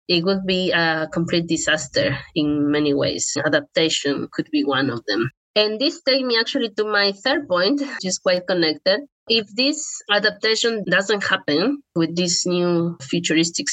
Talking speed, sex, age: 160 wpm, female, 20-39